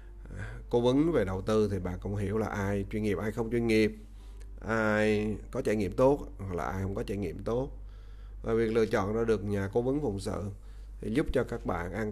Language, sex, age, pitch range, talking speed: Vietnamese, male, 20-39, 100-115 Hz, 235 wpm